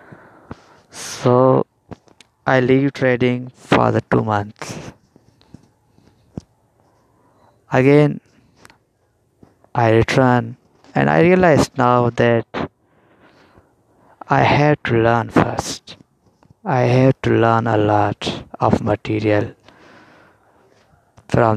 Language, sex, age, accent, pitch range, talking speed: English, male, 20-39, Indian, 115-130 Hz, 85 wpm